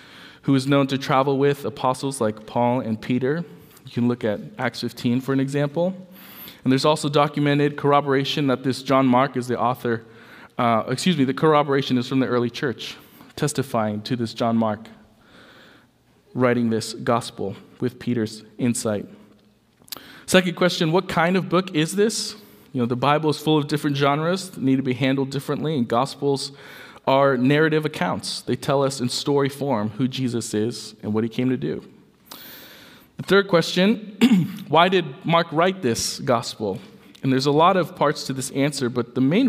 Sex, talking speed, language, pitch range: male, 180 wpm, English, 120-155 Hz